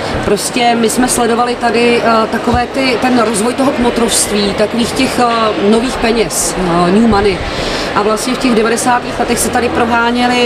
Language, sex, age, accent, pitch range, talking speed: Czech, female, 30-49, native, 210-240 Hz, 165 wpm